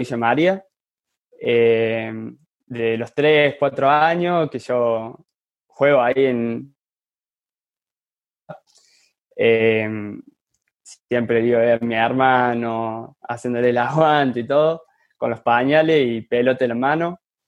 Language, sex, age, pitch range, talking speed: Spanish, male, 20-39, 115-150 Hz, 115 wpm